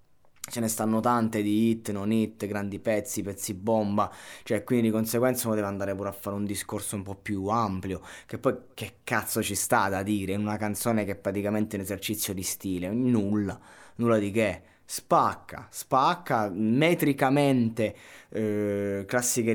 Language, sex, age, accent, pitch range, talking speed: Italian, male, 20-39, native, 100-115 Hz, 170 wpm